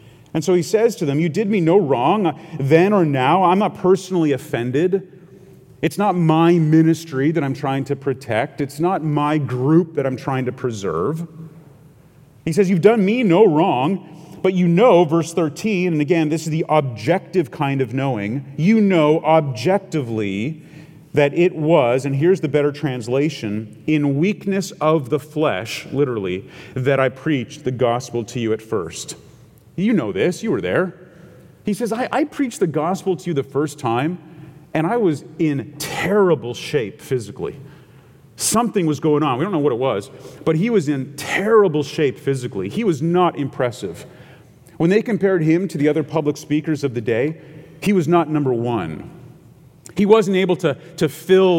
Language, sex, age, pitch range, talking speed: English, male, 30-49, 135-175 Hz, 175 wpm